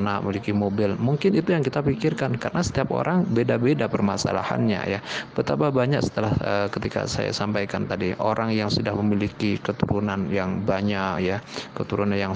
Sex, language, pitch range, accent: male, Indonesian, 100-120 Hz, native